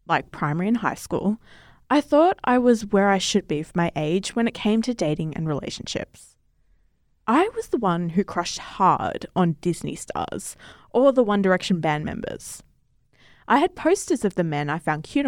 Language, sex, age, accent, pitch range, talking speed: English, female, 20-39, Australian, 170-240 Hz, 190 wpm